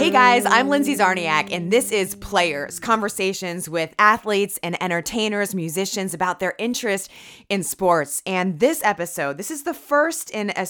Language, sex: English, female